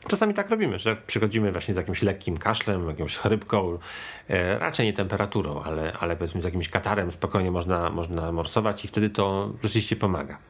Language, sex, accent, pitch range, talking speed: Polish, male, native, 100-140 Hz, 170 wpm